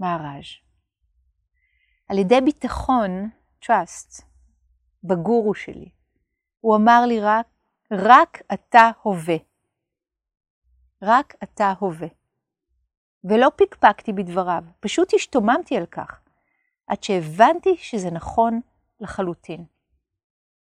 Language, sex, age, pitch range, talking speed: Hebrew, female, 40-59, 180-255 Hz, 85 wpm